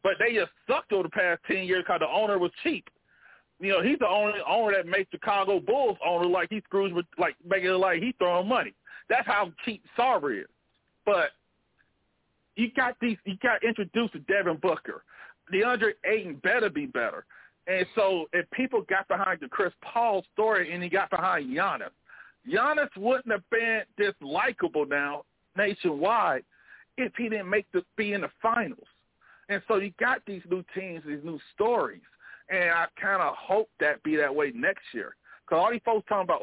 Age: 40-59